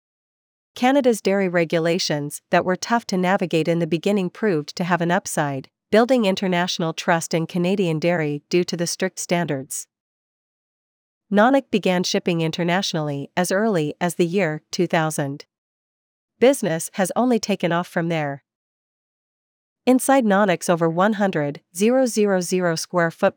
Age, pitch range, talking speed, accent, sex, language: 40-59, 165-200 Hz, 125 wpm, American, female, English